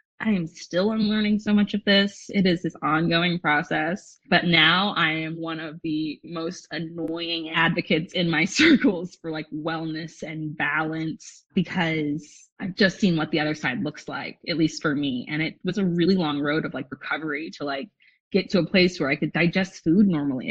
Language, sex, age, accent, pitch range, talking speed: English, female, 20-39, American, 155-190 Hz, 195 wpm